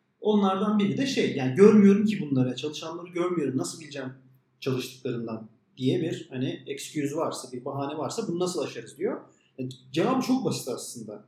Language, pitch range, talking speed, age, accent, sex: Turkish, 135-200 Hz, 160 wpm, 40-59, native, male